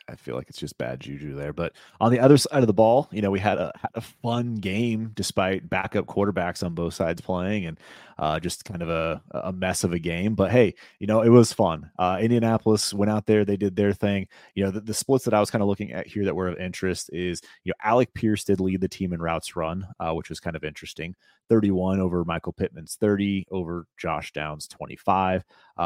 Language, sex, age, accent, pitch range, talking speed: English, male, 30-49, American, 90-110 Hz, 235 wpm